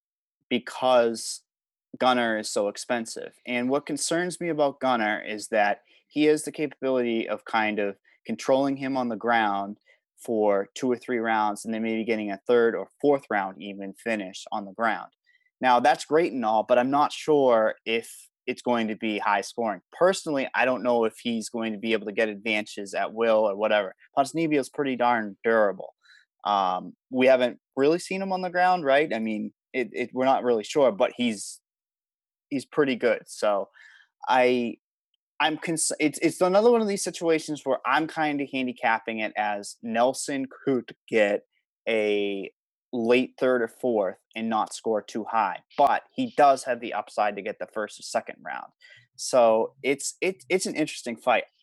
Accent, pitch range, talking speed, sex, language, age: American, 110-145 Hz, 180 wpm, male, English, 20-39